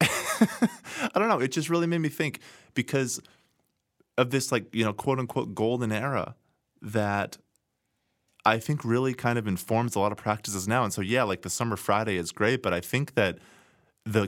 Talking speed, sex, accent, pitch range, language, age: 190 wpm, male, American, 90-110 Hz, English, 20-39